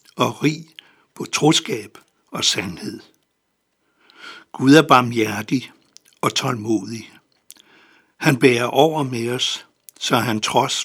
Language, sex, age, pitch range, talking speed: Danish, male, 60-79, 115-135 Hz, 105 wpm